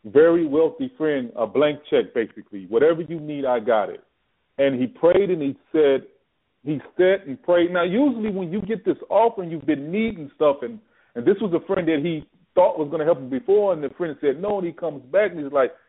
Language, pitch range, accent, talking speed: English, 135-195 Hz, American, 230 wpm